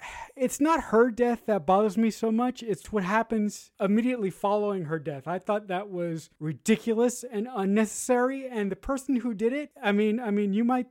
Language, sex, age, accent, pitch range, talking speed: English, male, 30-49, American, 170-215 Hz, 195 wpm